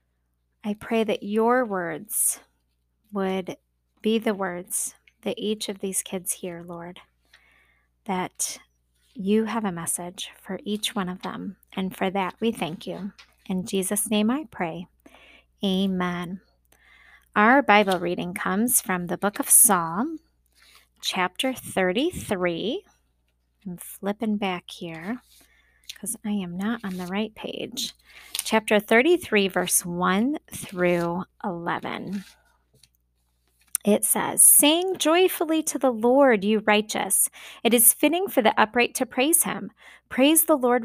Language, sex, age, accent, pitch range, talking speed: English, female, 20-39, American, 180-235 Hz, 130 wpm